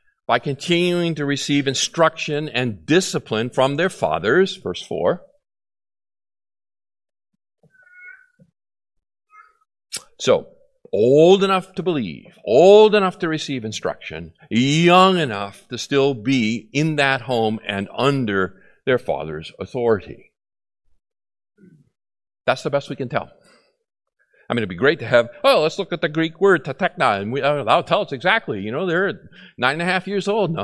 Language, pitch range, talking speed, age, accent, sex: English, 115-185 Hz, 140 wpm, 50-69, American, male